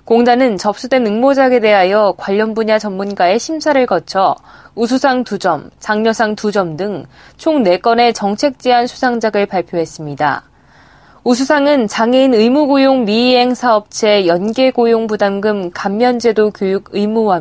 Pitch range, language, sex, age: 205-250 Hz, Korean, female, 20-39